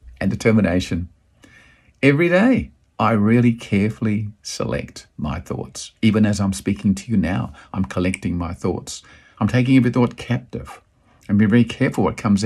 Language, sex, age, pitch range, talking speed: English, male, 50-69, 95-125 Hz, 155 wpm